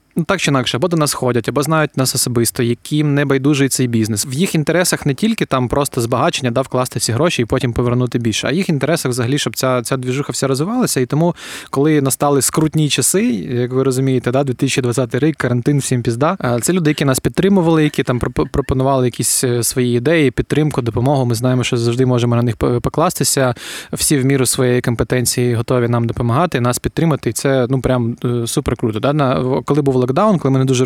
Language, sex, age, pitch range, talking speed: Ukrainian, male, 20-39, 125-150 Hz, 200 wpm